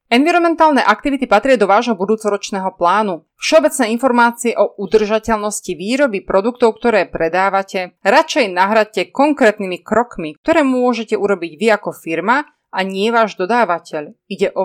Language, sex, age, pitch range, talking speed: Slovak, female, 30-49, 195-260 Hz, 125 wpm